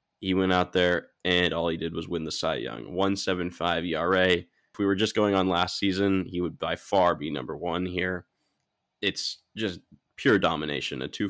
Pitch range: 90-105 Hz